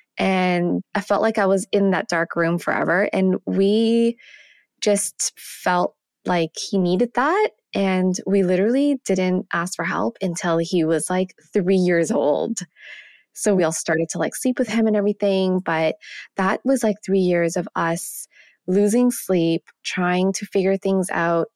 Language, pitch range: English, 175-220 Hz